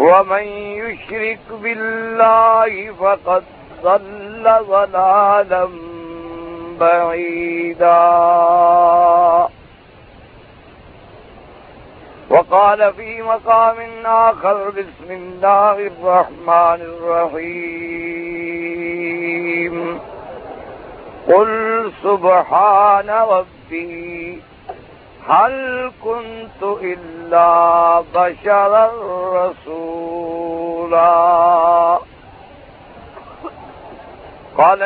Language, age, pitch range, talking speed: Urdu, 50-69, 170-215 Hz, 40 wpm